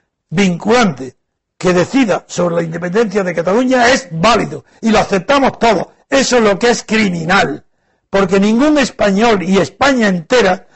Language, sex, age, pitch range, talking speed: Spanish, male, 60-79, 180-245 Hz, 145 wpm